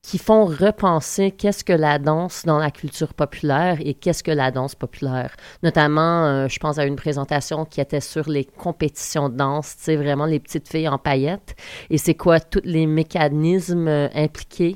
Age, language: 30-49, French